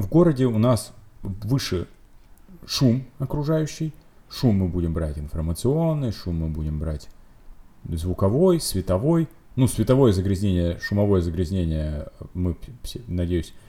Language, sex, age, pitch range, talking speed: Russian, male, 30-49, 90-115 Hz, 110 wpm